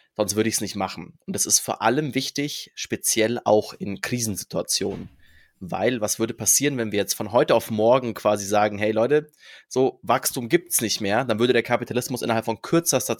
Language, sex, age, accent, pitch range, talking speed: German, male, 20-39, German, 105-120 Hz, 200 wpm